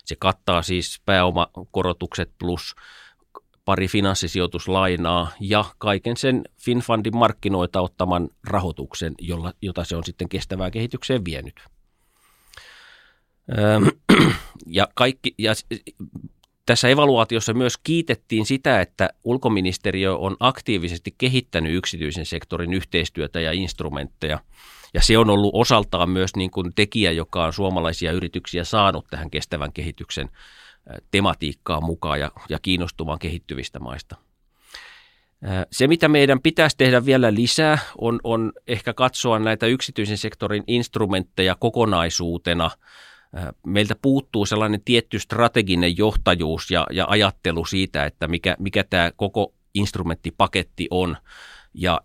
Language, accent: Finnish, native